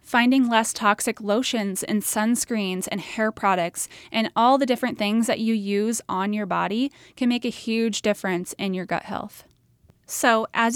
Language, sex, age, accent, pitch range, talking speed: English, female, 10-29, American, 205-245 Hz, 175 wpm